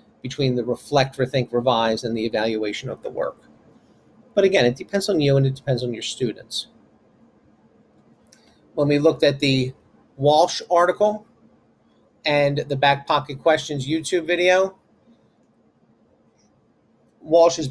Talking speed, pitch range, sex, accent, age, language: 130 wpm, 135-175 Hz, male, American, 40-59, English